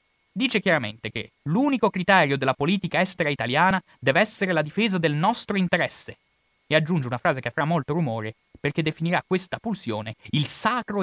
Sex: male